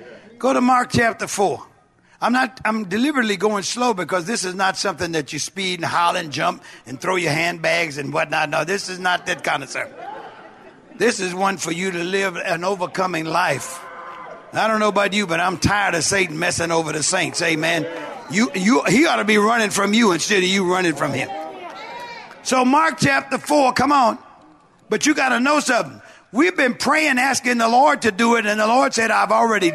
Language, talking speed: English, 210 wpm